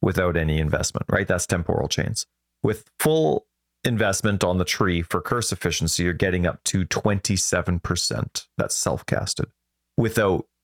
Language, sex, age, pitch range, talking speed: English, male, 30-49, 80-100 Hz, 135 wpm